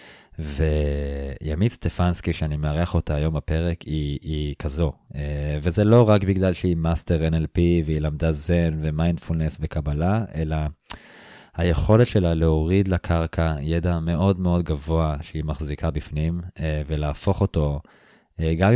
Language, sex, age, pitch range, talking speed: Hebrew, male, 20-39, 80-95 Hz, 120 wpm